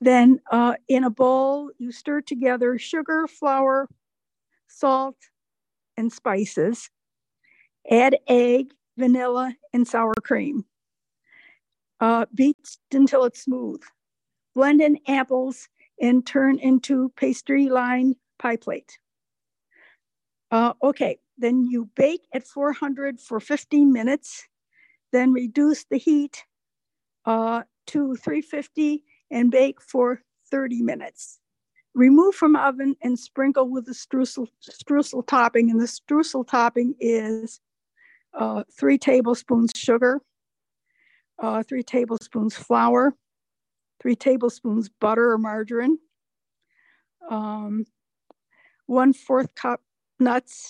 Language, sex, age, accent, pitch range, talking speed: English, female, 60-79, American, 235-275 Hz, 105 wpm